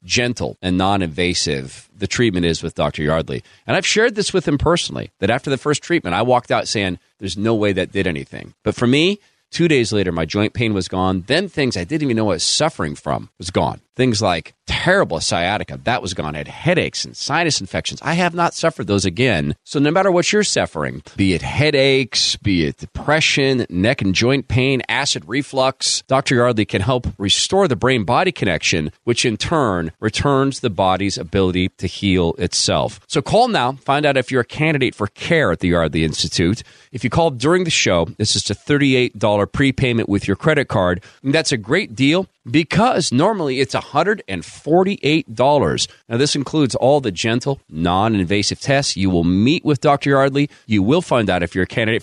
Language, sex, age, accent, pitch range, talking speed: English, male, 40-59, American, 100-155 Hz, 195 wpm